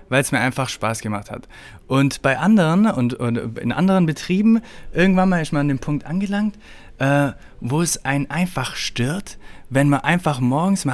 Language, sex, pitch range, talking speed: German, male, 130-170 Hz, 180 wpm